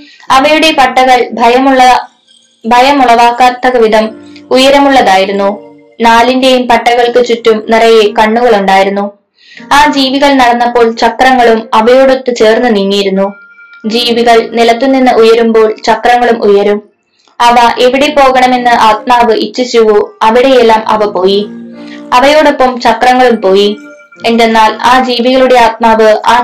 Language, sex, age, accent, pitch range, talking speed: Malayalam, female, 20-39, native, 220-260 Hz, 90 wpm